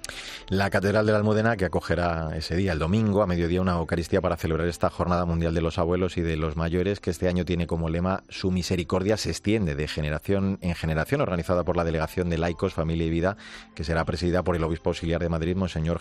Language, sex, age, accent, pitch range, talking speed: Spanish, male, 30-49, Spanish, 80-95 Hz, 225 wpm